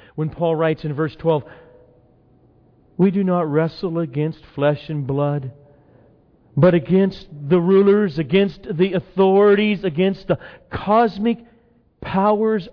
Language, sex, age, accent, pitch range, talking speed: English, male, 50-69, American, 120-185 Hz, 120 wpm